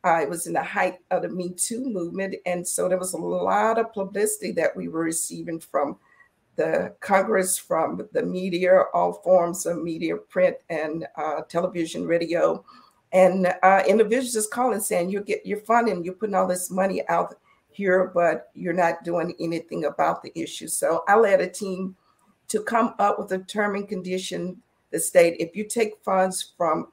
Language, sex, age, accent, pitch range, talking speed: English, female, 50-69, American, 170-205 Hz, 180 wpm